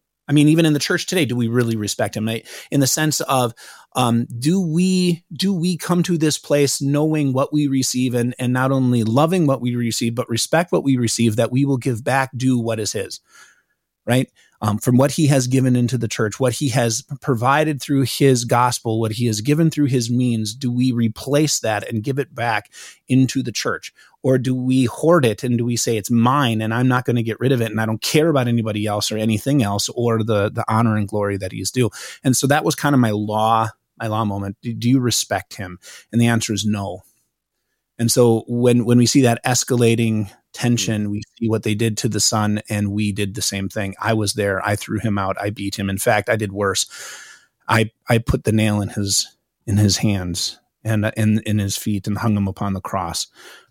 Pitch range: 110-135 Hz